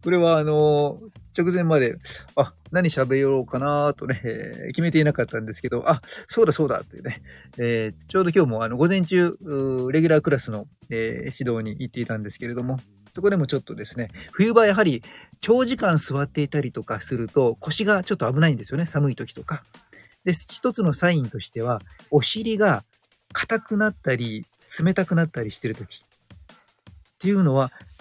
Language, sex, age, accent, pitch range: Japanese, male, 50-69, native, 120-165 Hz